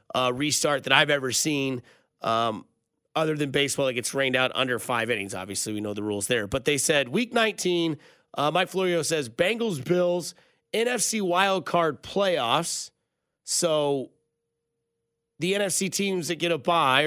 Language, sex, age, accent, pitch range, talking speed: English, male, 30-49, American, 135-180 Hz, 160 wpm